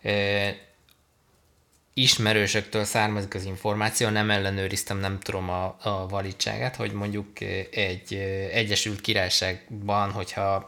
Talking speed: 95 wpm